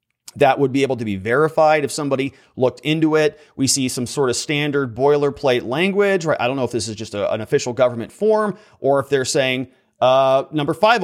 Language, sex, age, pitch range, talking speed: English, male, 30-49, 120-155 Hz, 210 wpm